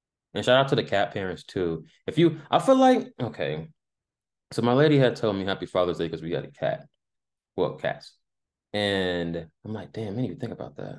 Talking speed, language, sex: 220 wpm, English, male